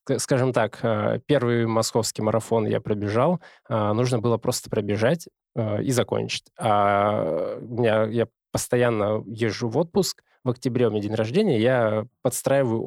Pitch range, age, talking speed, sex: 110-130 Hz, 20-39, 125 wpm, male